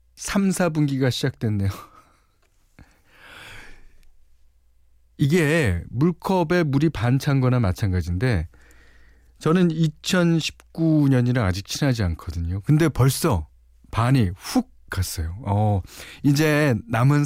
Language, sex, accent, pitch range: Korean, male, native, 95-150 Hz